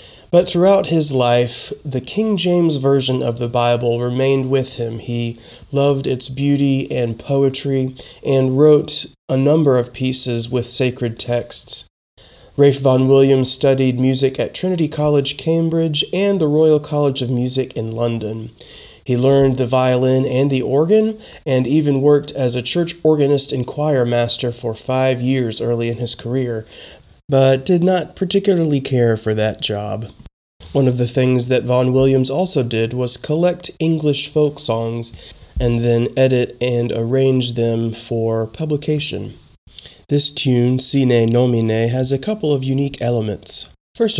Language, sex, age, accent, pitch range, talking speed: English, male, 30-49, American, 120-140 Hz, 150 wpm